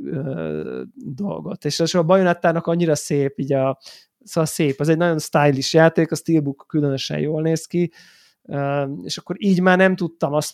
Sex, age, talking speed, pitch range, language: male, 20-39, 170 wpm, 145-165 Hz, Hungarian